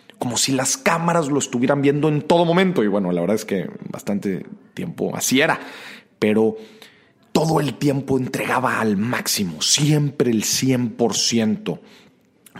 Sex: male